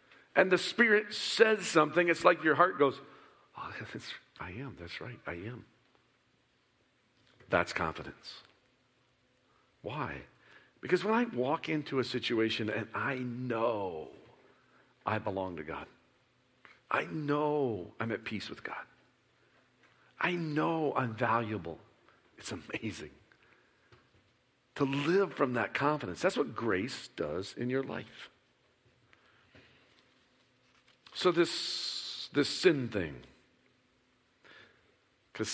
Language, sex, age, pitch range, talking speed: English, male, 50-69, 125-190 Hz, 110 wpm